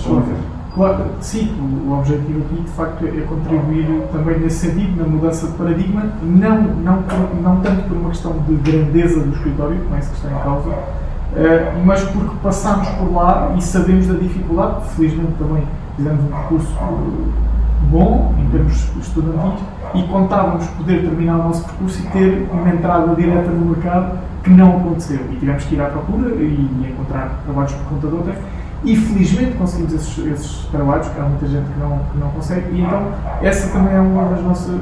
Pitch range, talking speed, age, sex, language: 150-185 Hz, 180 wpm, 20-39, male, Portuguese